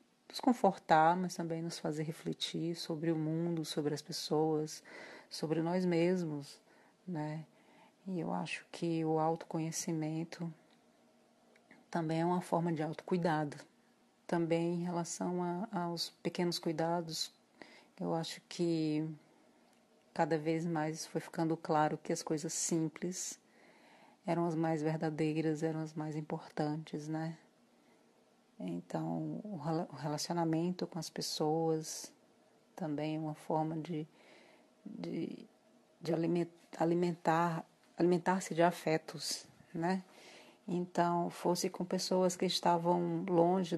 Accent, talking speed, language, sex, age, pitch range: Brazilian, 110 wpm, Portuguese, female, 40-59, 155-175 Hz